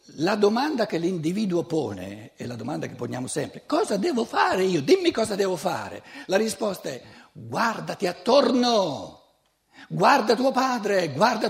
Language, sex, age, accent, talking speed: Italian, male, 60-79, native, 145 wpm